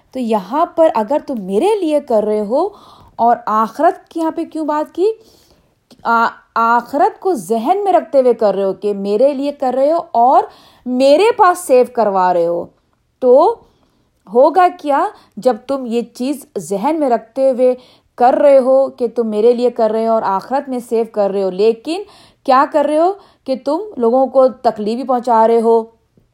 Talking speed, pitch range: 185 wpm, 225-295 Hz